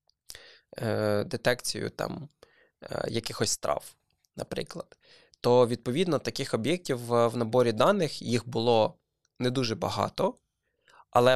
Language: Ukrainian